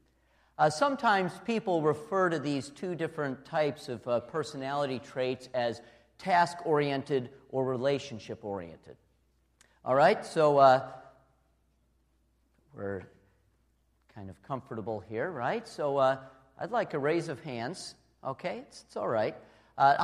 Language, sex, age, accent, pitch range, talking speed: English, male, 50-69, American, 120-175 Hz, 130 wpm